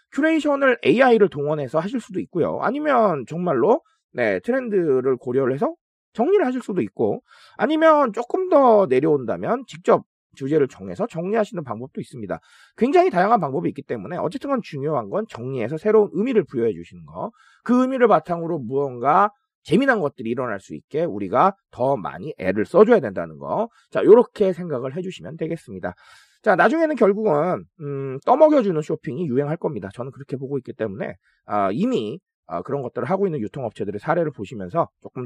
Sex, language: male, Korean